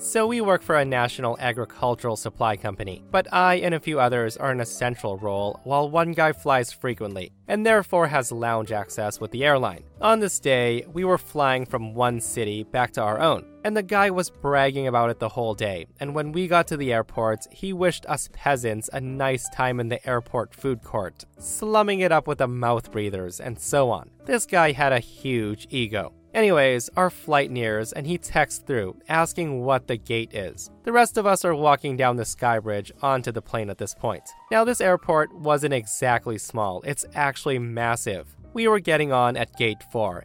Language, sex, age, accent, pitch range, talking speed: English, male, 20-39, American, 115-160 Hz, 205 wpm